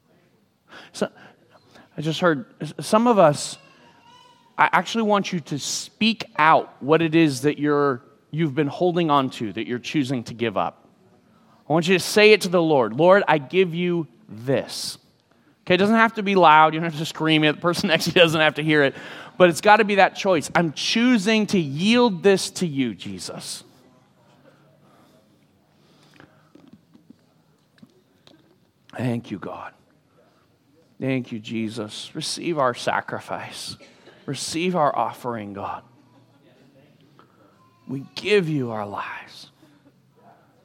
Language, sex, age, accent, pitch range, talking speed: English, male, 30-49, American, 135-185 Hz, 150 wpm